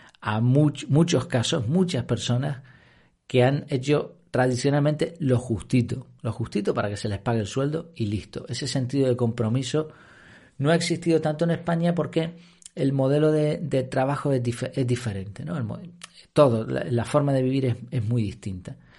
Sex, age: male, 40-59